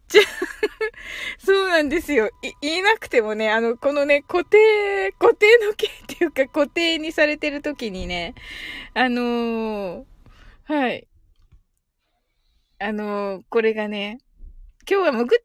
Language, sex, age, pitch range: Japanese, female, 20-39, 225-350 Hz